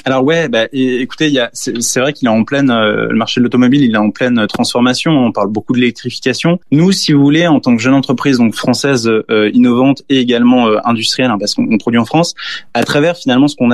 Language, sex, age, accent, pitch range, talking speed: French, male, 20-39, French, 115-140 Hz, 245 wpm